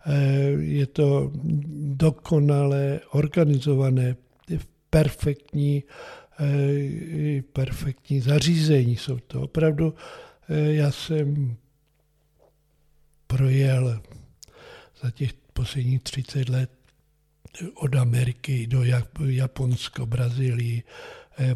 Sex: male